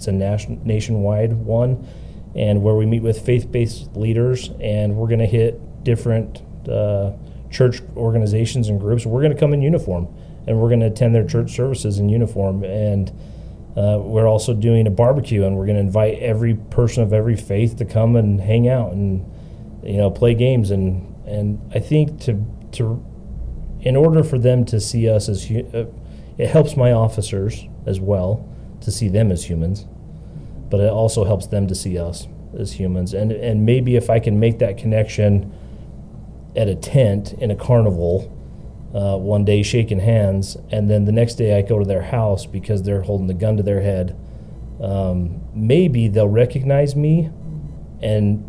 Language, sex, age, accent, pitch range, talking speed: English, male, 30-49, American, 100-115 Hz, 180 wpm